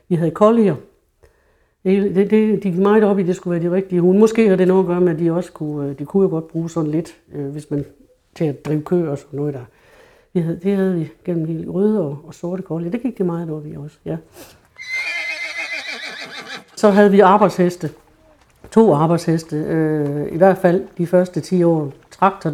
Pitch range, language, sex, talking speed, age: 155-195 Hz, Danish, female, 210 wpm, 60-79